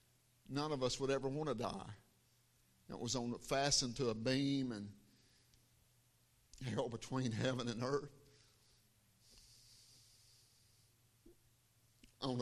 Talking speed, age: 105 wpm, 50-69